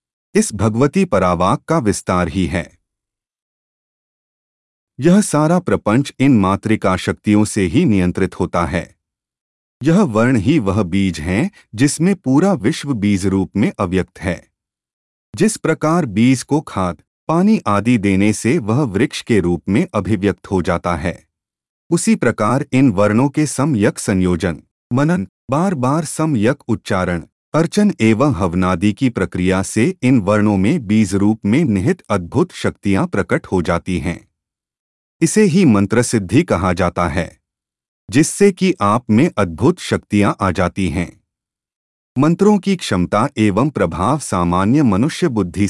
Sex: male